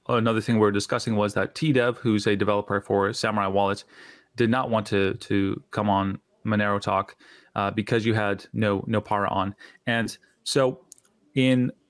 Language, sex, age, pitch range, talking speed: English, male, 30-49, 105-120 Hz, 165 wpm